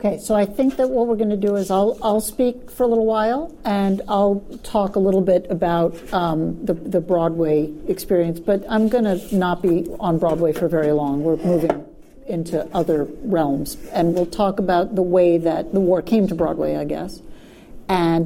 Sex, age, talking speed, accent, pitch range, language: female, 50-69, 200 wpm, American, 165-205 Hz, English